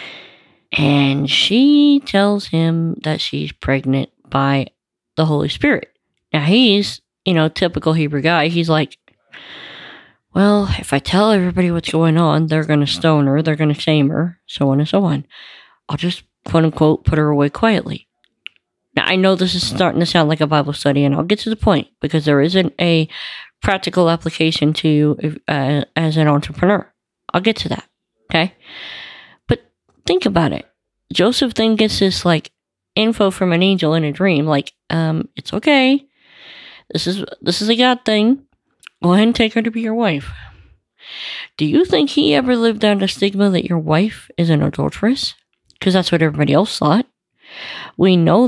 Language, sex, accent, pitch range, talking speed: English, female, American, 150-200 Hz, 175 wpm